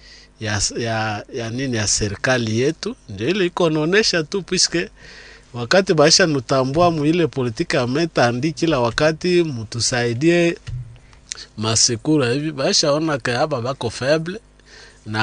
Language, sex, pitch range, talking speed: French, male, 110-155 Hz, 115 wpm